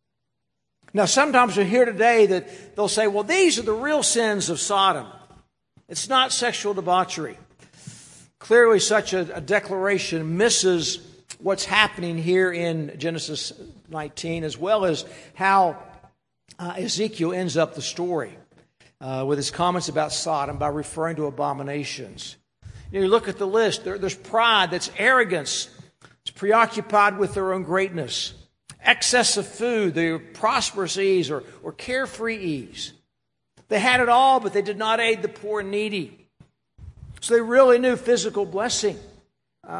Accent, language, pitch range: American, English, 160-215 Hz